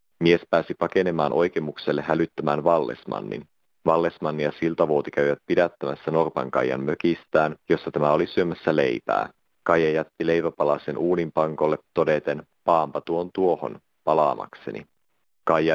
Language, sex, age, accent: Finnish, male, 30-49, native